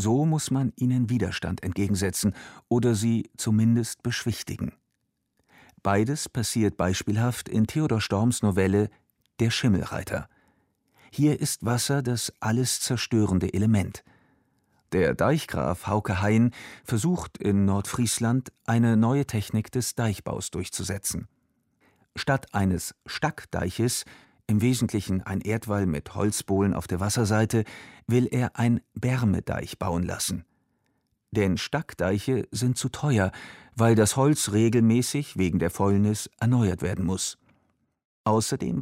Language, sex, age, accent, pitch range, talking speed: German, male, 50-69, German, 100-125 Hz, 115 wpm